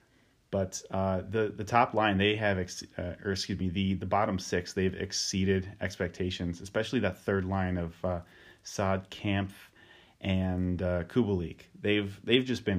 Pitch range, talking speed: 95-110 Hz, 165 wpm